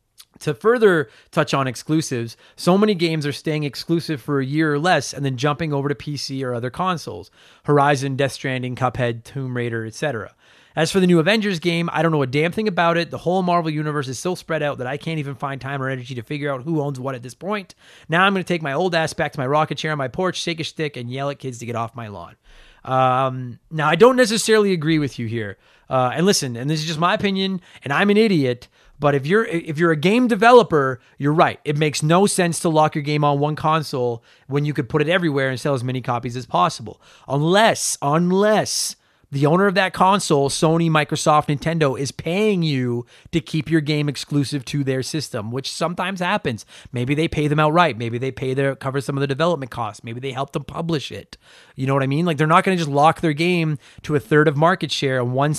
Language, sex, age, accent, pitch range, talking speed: English, male, 30-49, American, 135-170 Hz, 240 wpm